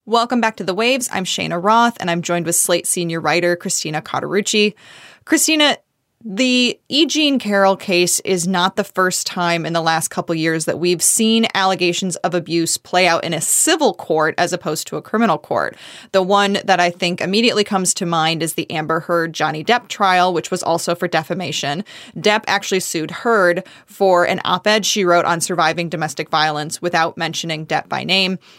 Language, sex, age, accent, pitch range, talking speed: English, female, 20-39, American, 165-210 Hz, 185 wpm